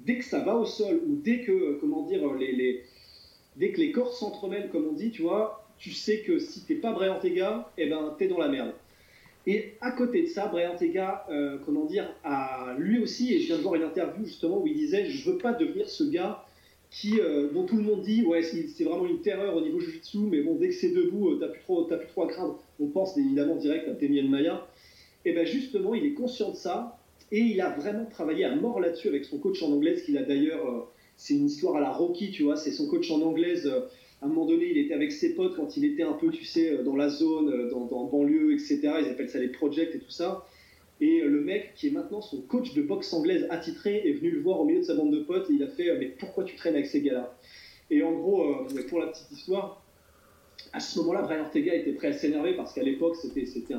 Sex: male